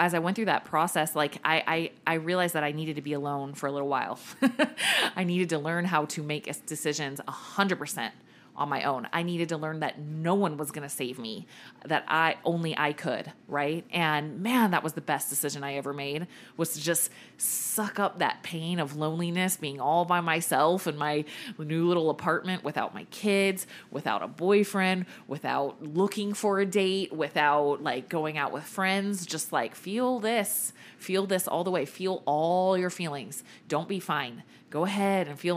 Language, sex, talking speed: English, female, 200 wpm